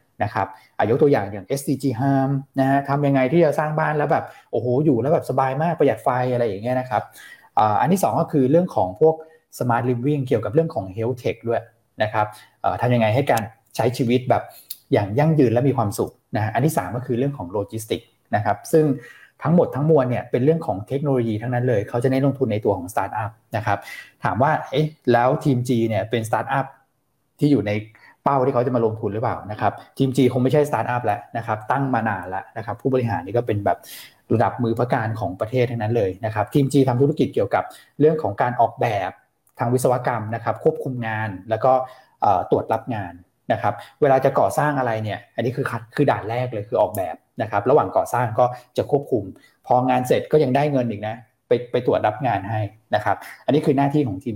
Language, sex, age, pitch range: Thai, male, 20-39, 110-140 Hz